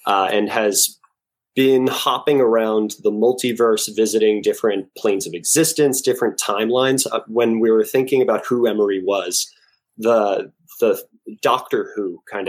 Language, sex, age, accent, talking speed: English, male, 20-39, American, 140 wpm